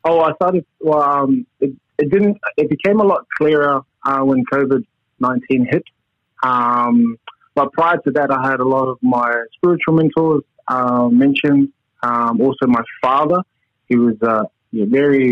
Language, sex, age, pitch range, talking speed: English, male, 20-39, 125-150 Hz, 160 wpm